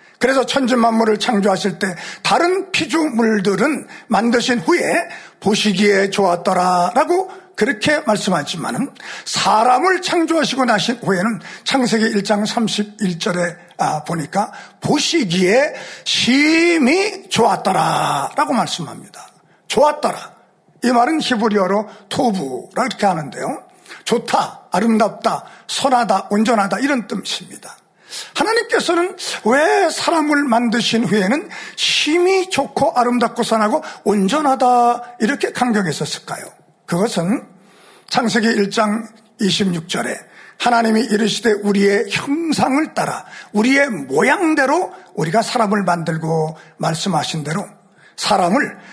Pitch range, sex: 205-290 Hz, male